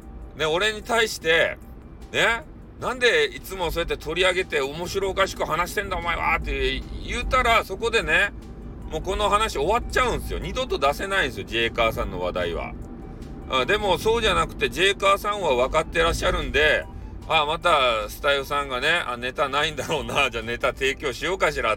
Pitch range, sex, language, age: 110-165 Hz, male, Japanese, 40-59